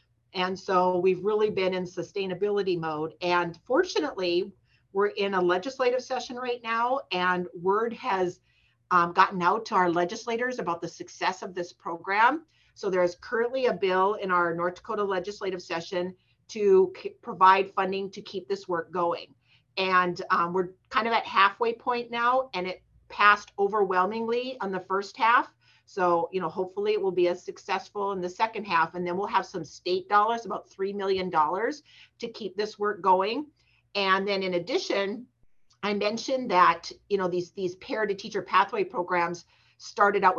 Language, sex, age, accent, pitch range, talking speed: English, female, 40-59, American, 175-205 Hz, 170 wpm